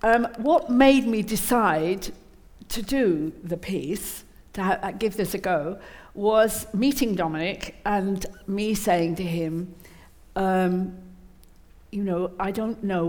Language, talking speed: English, 130 wpm